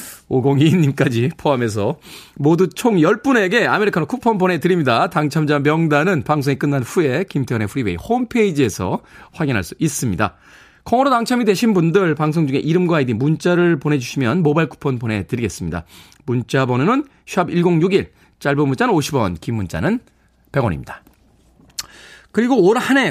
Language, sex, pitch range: Korean, male, 125-185 Hz